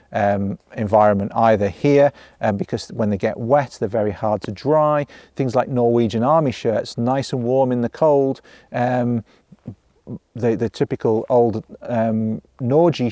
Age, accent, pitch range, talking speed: 40-59, British, 110-130 Hz, 155 wpm